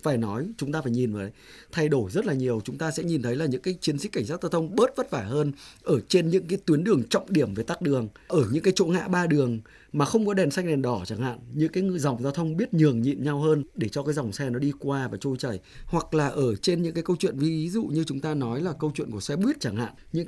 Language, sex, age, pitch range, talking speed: Vietnamese, male, 20-39, 125-170 Hz, 300 wpm